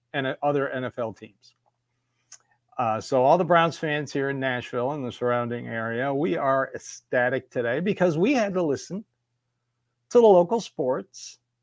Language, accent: English, American